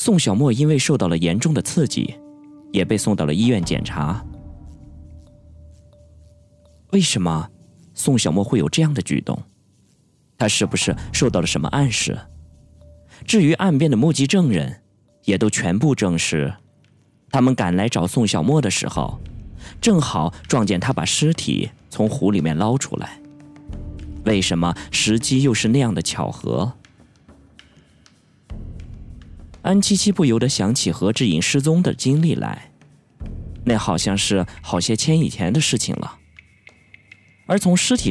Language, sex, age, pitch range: Chinese, male, 20-39, 85-140 Hz